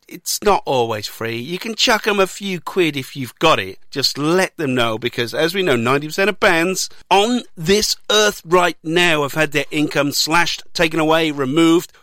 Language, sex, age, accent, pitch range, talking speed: English, male, 50-69, British, 125-170 Hz, 195 wpm